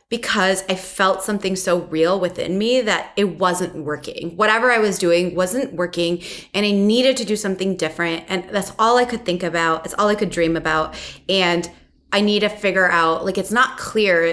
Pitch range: 170-220 Hz